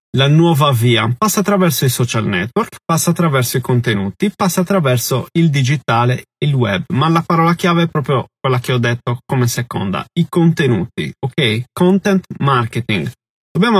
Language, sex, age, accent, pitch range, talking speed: Italian, male, 30-49, native, 120-155 Hz, 160 wpm